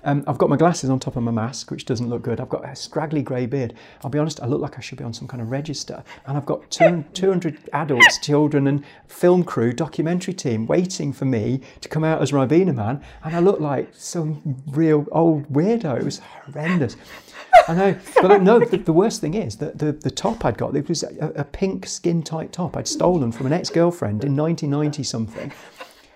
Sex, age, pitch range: male, 40-59, 130-170 Hz